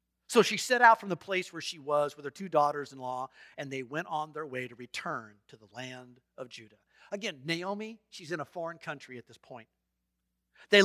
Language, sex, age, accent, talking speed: English, male, 50-69, American, 210 wpm